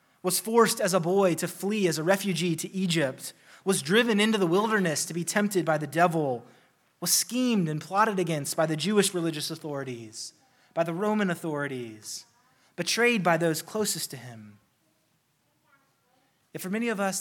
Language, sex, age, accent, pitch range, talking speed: English, male, 20-39, American, 160-195 Hz, 165 wpm